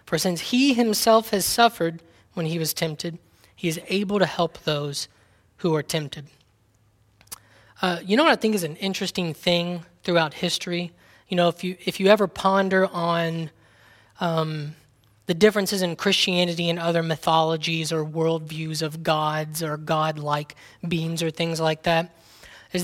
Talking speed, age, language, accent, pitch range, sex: 160 wpm, 20-39, English, American, 160-195 Hz, male